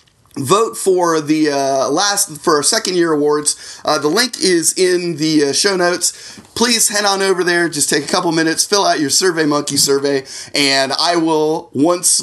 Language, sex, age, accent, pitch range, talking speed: English, male, 30-49, American, 135-185 Hz, 185 wpm